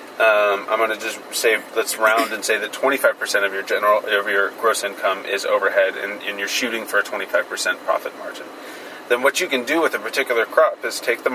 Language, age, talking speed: English, 30-49, 220 wpm